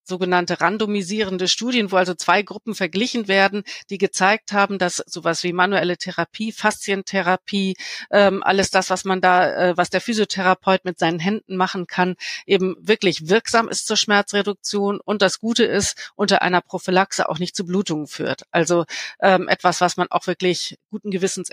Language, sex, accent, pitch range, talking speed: German, female, German, 175-200 Hz, 165 wpm